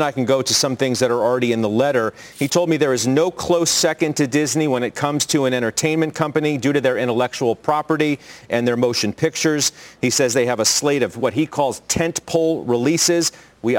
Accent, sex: American, male